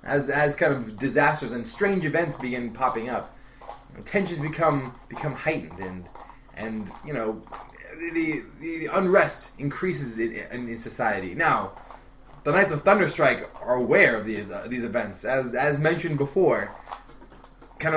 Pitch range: 125-165 Hz